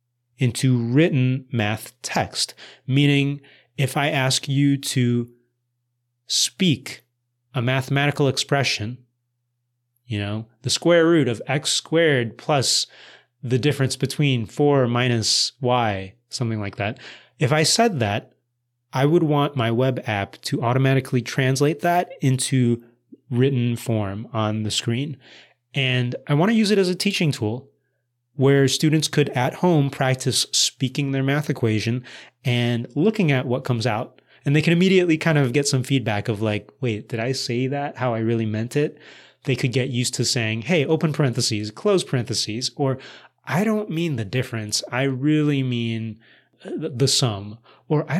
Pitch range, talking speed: 120-145 Hz, 150 wpm